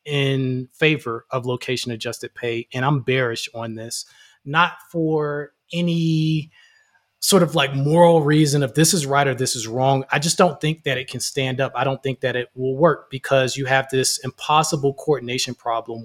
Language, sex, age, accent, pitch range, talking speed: English, male, 20-39, American, 125-150 Hz, 185 wpm